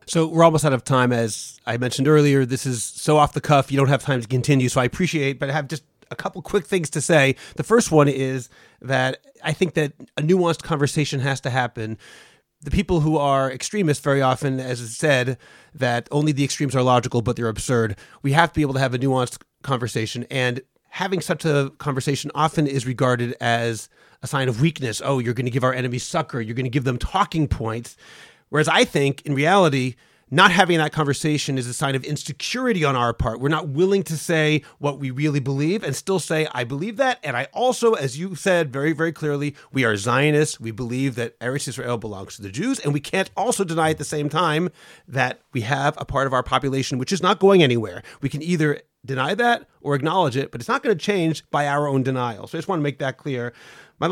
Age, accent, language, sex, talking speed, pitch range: 30-49, American, English, male, 230 wpm, 130-160 Hz